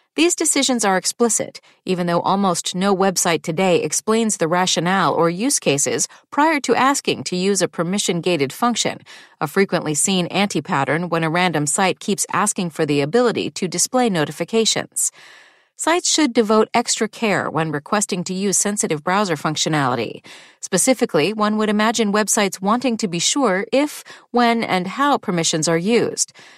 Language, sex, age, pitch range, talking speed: English, female, 40-59, 175-250 Hz, 155 wpm